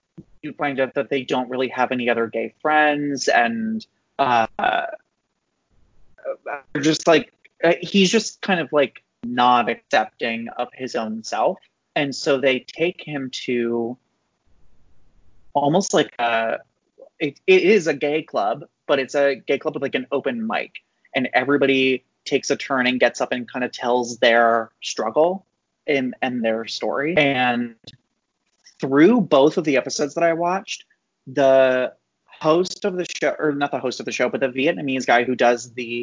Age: 30-49